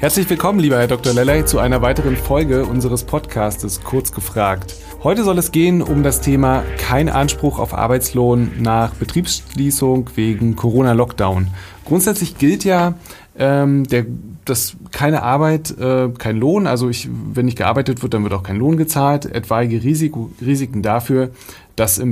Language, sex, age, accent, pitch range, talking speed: German, male, 30-49, German, 115-145 Hz, 155 wpm